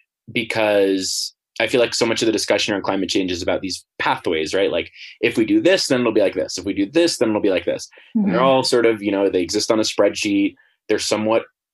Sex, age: male, 20-39